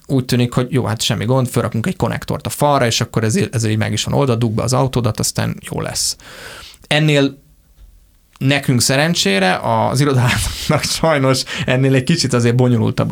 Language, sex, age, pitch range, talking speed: Hungarian, male, 20-39, 115-140 Hz, 170 wpm